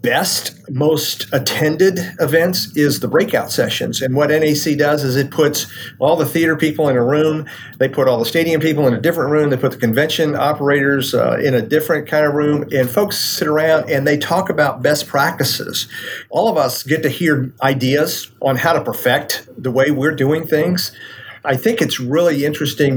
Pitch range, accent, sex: 125-155 Hz, American, male